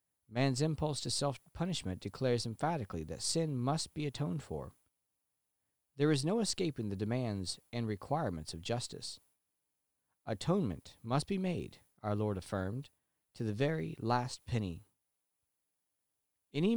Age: 40-59